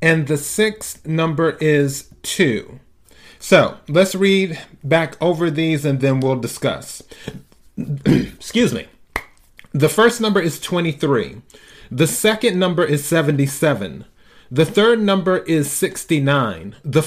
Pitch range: 135-170 Hz